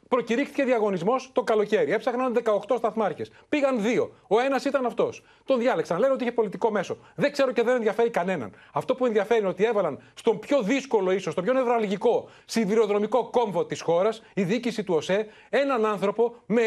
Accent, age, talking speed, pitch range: native, 30-49, 180 wpm, 200-250 Hz